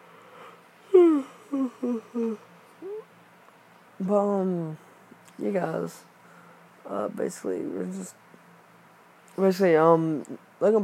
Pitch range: 135-195 Hz